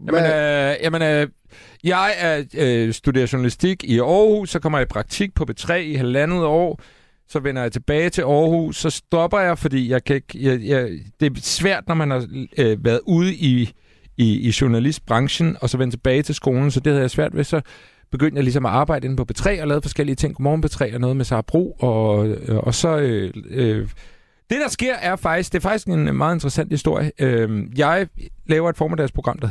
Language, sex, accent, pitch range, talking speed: Danish, male, native, 110-155 Hz, 205 wpm